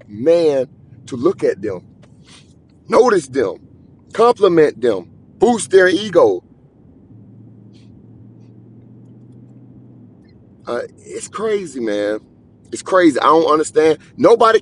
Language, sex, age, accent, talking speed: English, male, 30-49, American, 90 wpm